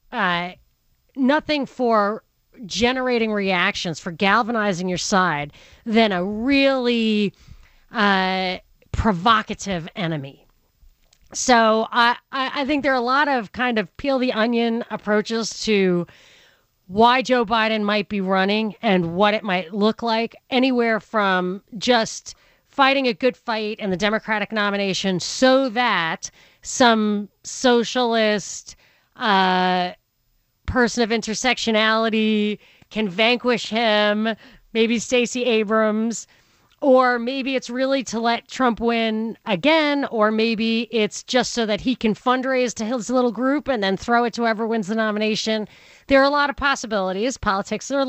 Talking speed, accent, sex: 130 wpm, American, female